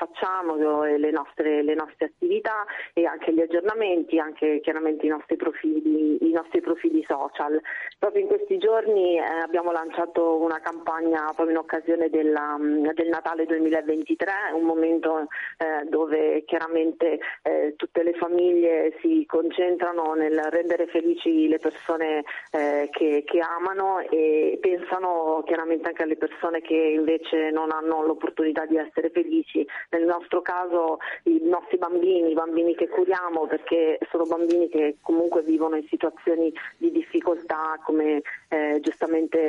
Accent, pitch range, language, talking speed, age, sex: native, 155-175 Hz, Italian, 135 wpm, 30-49, female